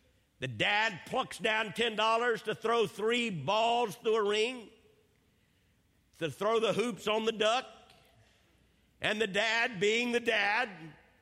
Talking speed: 135 wpm